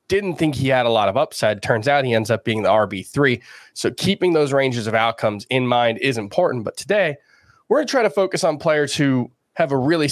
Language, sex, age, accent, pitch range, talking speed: English, male, 20-39, American, 115-145 Hz, 235 wpm